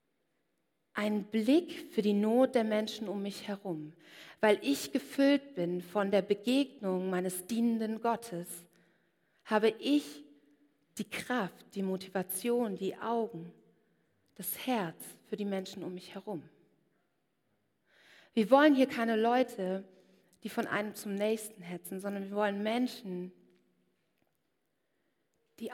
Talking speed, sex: 120 wpm, female